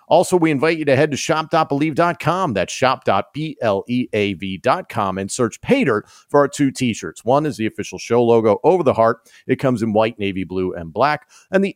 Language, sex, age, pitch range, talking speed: English, male, 40-59, 105-135 Hz, 185 wpm